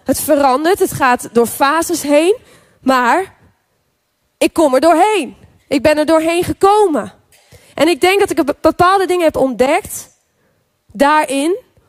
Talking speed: 135 wpm